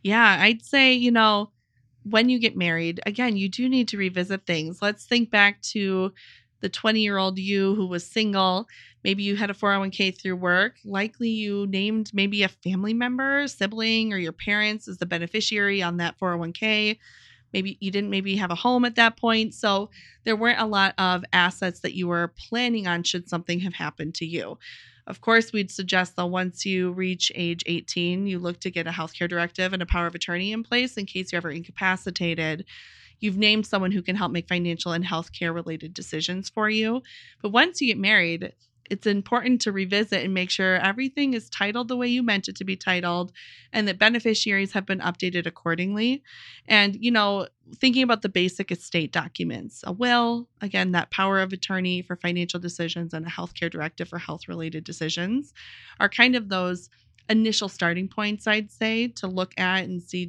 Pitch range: 175-215 Hz